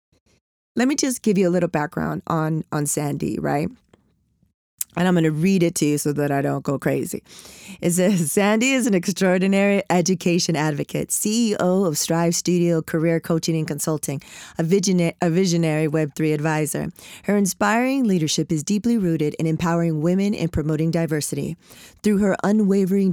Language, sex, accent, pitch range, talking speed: English, female, American, 160-195 Hz, 160 wpm